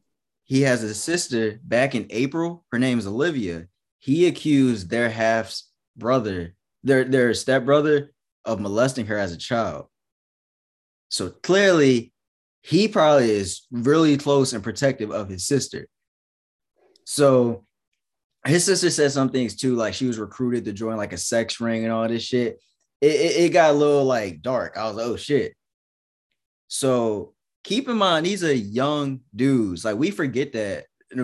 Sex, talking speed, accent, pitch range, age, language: male, 160 wpm, American, 110-145 Hz, 20-39, English